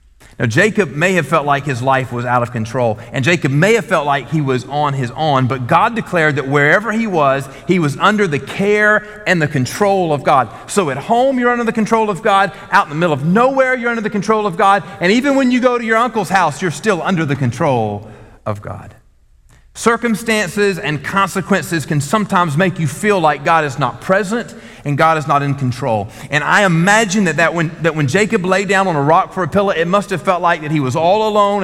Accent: American